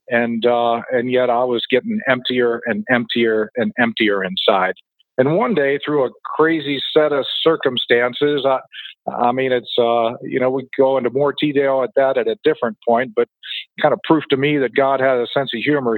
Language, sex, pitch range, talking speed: English, male, 110-140 Hz, 200 wpm